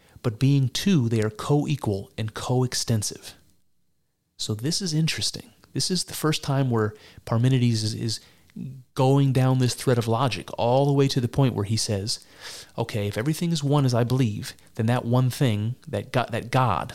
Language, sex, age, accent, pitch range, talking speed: English, male, 30-49, American, 110-135 Hz, 185 wpm